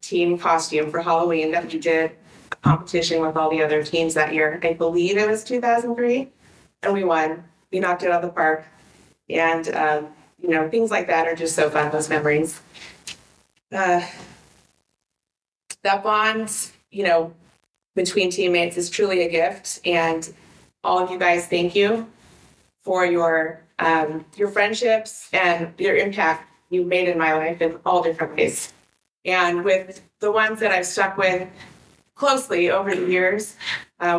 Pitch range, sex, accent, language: 160-190 Hz, female, American, English